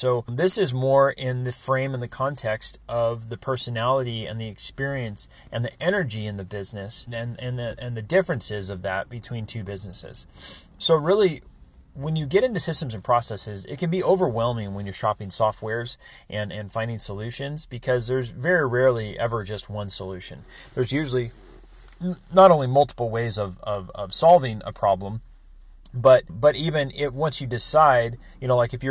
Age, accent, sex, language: 30-49, American, male, English